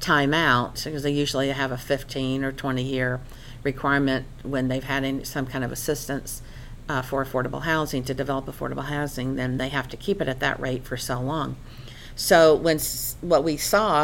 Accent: American